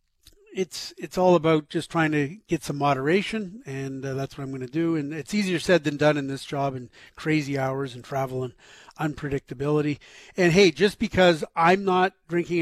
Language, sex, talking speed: English, male, 195 wpm